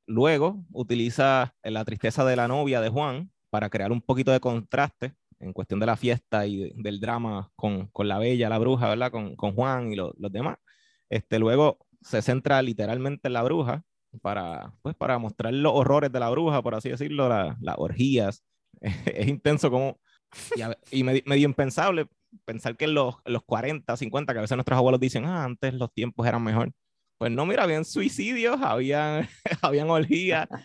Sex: male